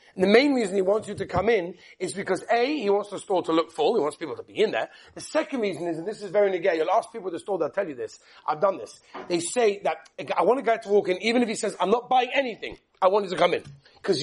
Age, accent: 30-49, British